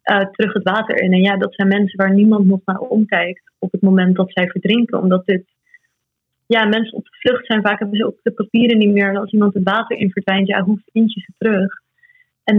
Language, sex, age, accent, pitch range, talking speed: Dutch, female, 20-39, Dutch, 190-220 Hz, 240 wpm